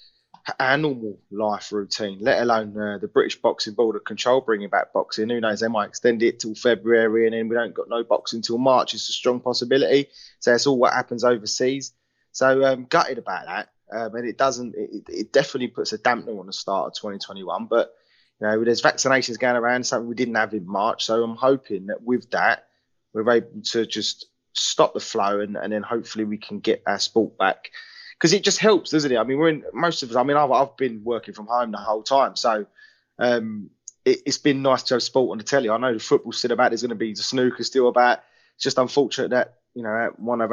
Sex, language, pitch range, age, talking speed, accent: male, English, 115-135 Hz, 20-39, 230 wpm, British